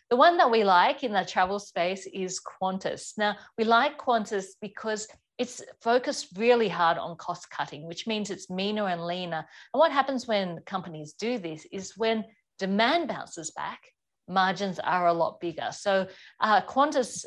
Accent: Australian